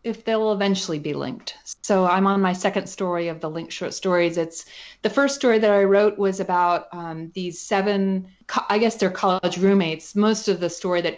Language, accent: English, American